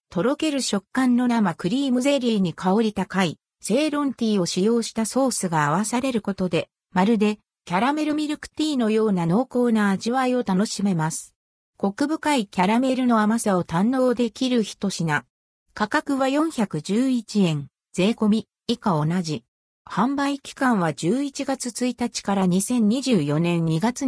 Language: Japanese